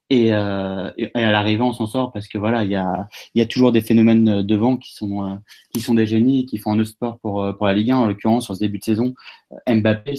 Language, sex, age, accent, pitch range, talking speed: French, male, 30-49, French, 105-120 Hz, 285 wpm